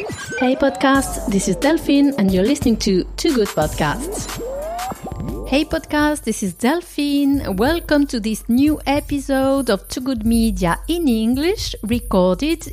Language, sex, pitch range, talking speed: French, female, 195-285 Hz, 135 wpm